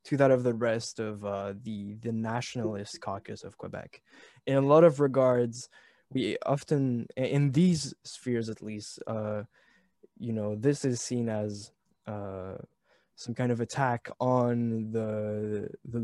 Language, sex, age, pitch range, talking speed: English, male, 20-39, 115-145 Hz, 150 wpm